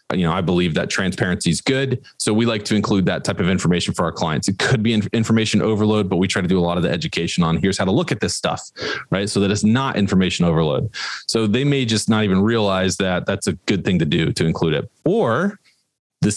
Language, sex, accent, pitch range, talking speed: English, male, American, 100-130 Hz, 255 wpm